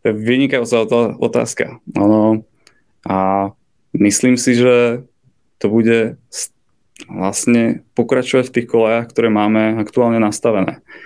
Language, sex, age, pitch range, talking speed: Czech, male, 20-39, 105-120 Hz, 105 wpm